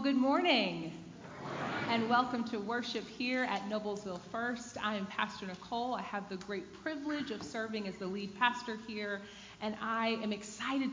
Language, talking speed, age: English, 165 wpm, 30-49